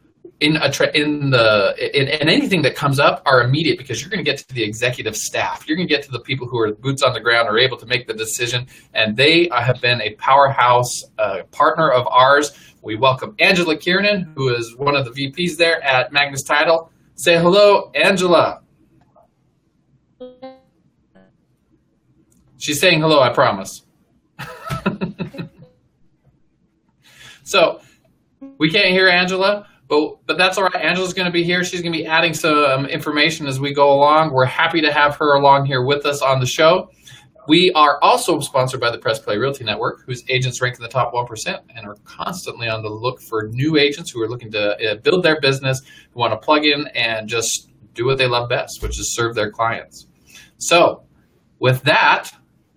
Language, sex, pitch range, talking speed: English, male, 125-165 Hz, 185 wpm